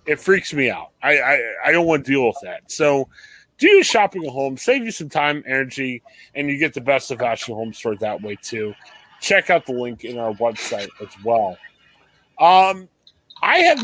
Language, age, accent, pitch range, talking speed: English, 30-49, American, 130-195 Hz, 205 wpm